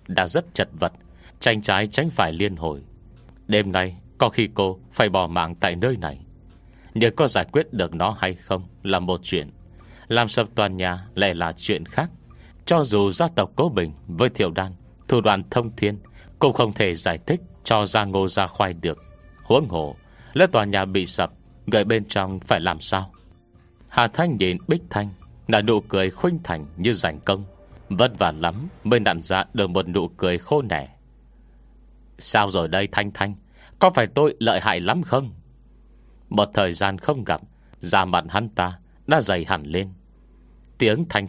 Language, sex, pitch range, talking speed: Vietnamese, male, 90-110 Hz, 185 wpm